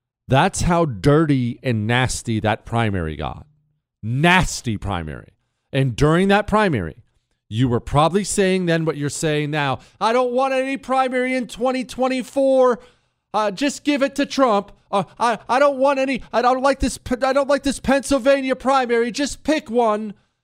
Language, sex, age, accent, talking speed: English, male, 40-59, American, 160 wpm